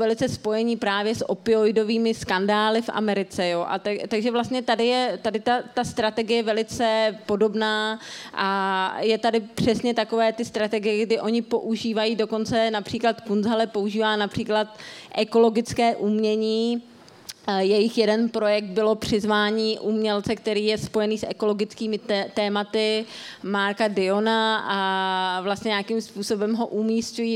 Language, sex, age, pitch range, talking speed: Czech, female, 30-49, 200-225 Hz, 130 wpm